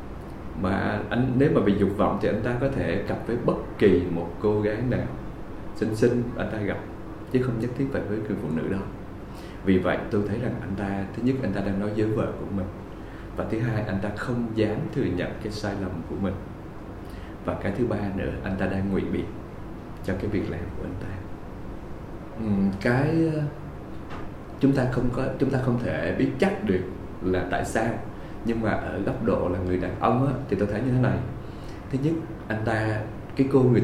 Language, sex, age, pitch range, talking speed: Vietnamese, male, 20-39, 100-120 Hz, 215 wpm